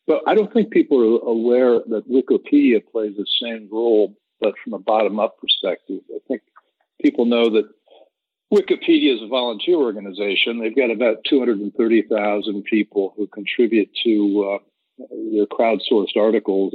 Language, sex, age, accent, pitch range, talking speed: English, male, 60-79, American, 100-125 Hz, 145 wpm